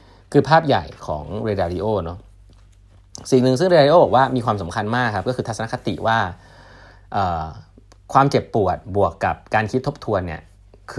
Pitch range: 95-120 Hz